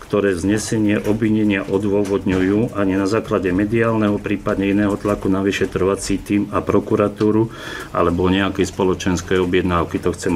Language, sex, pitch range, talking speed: Slovak, male, 95-105 Hz, 125 wpm